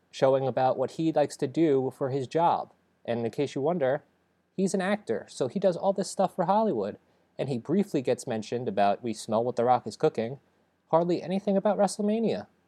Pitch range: 115-170 Hz